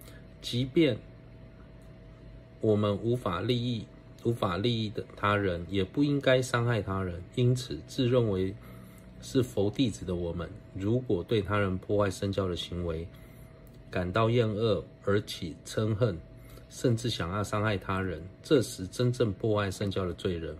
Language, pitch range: Chinese, 95-125 Hz